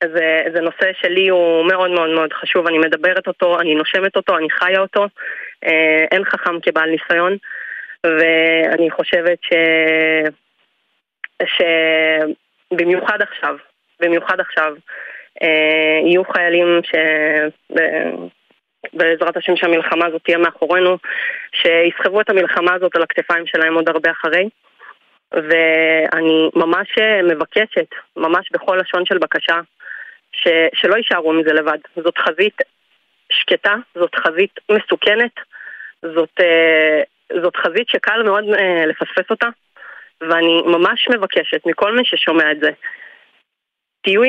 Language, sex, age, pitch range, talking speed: Hebrew, female, 20-39, 165-195 Hz, 110 wpm